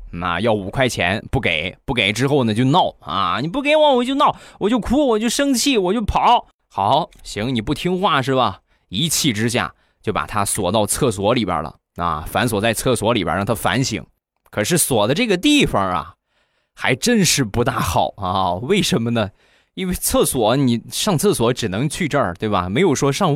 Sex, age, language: male, 20-39, Chinese